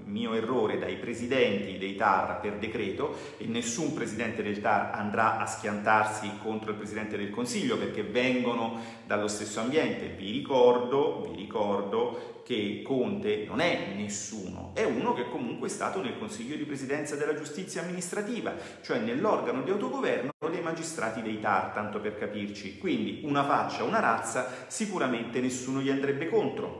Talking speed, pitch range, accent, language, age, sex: 155 wpm, 105-165 Hz, native, Italian, 40-59, male